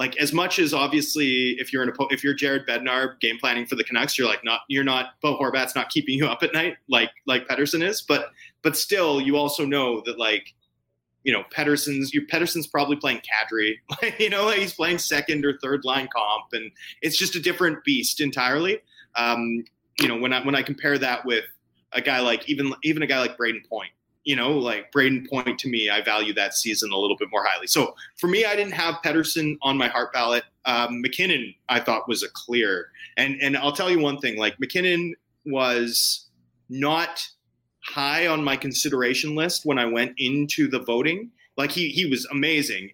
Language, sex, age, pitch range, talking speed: English, male, 30-49, 120-150 Hz, 205 wpm